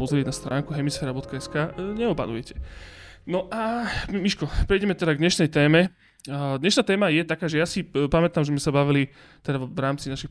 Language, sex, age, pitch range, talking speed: Slovak, male, 20-39, 140-165 Hz, 170 wpm